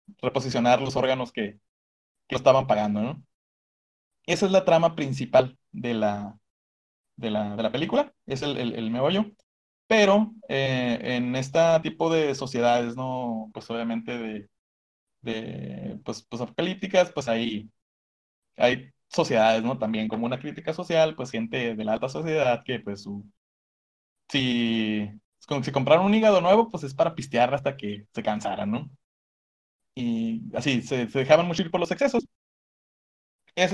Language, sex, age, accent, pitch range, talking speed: Spanish, male, 20-39, Mexican, 115-165 Hz, 150 wpm